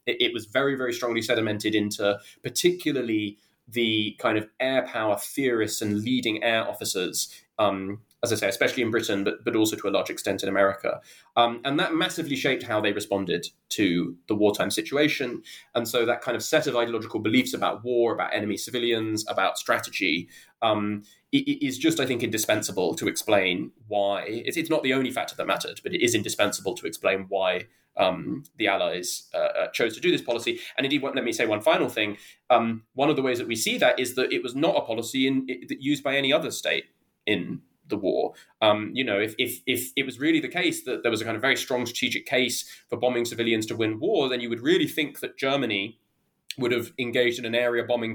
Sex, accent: male, British